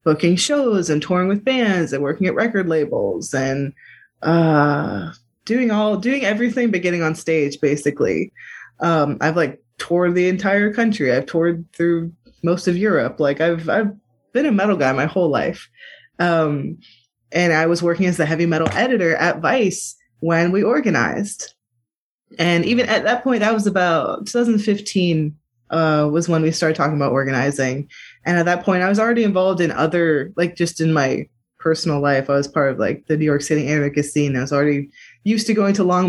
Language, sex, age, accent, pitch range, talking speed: English, female, 20-39, American, 150-195 Hz, 185 wpm